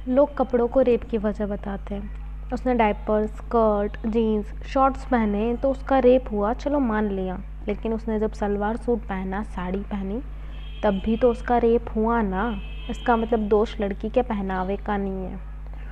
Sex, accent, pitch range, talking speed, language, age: female, native, 205-245 Hz, 170 wpm, Hindi, 20-39